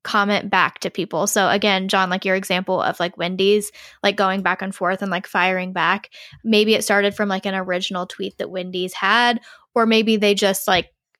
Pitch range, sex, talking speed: 190-220 Hz, female, 205 wpm